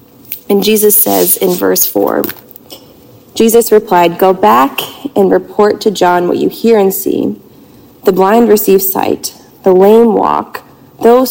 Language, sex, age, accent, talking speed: English, female, 30-49, American, 145 wpm